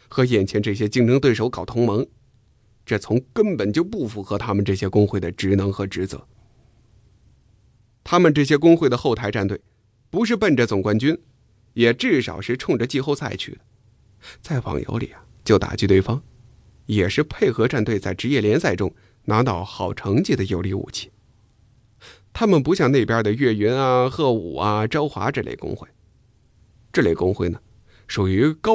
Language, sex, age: English, male, 20-39